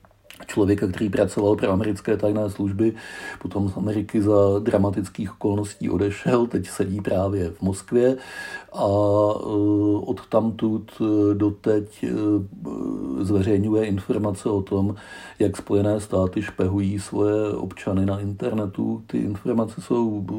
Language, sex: Czech, male